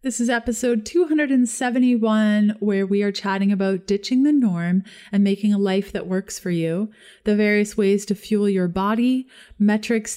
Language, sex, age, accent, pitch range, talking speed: English, female, 30-49, American, 195-240 Hz, 165 wpm